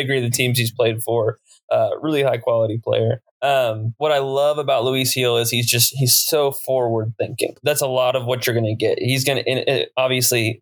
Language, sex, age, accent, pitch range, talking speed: English, male, 20-39, American, 115-130 Hz, 215 wpm